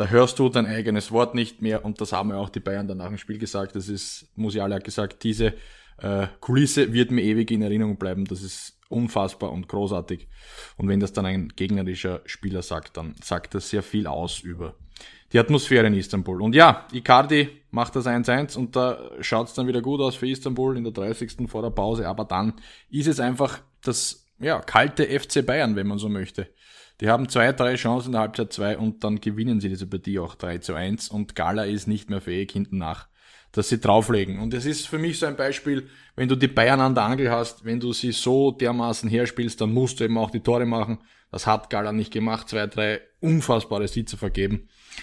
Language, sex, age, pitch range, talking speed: German, male, 20-39, 100-120 Hz, 215 wpm